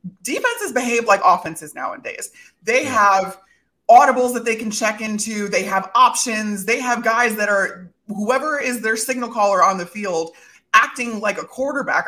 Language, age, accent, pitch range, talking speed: English, 20-39, American, 195-260 Hz, 165 wpm